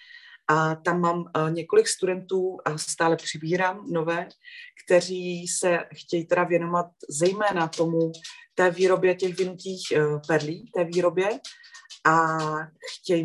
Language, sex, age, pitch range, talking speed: Czech, female, 30-49, 155-185 Hz, 115 wpm